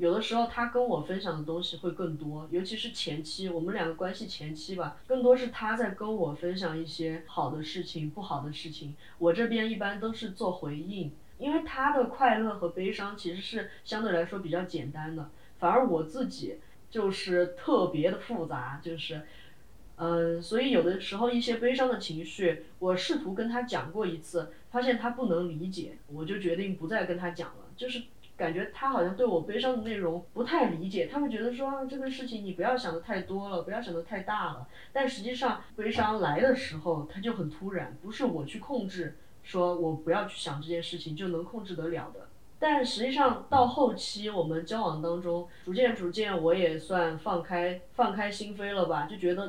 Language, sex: Chinese, female